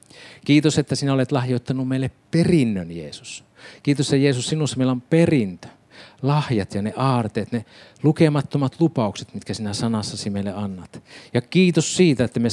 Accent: native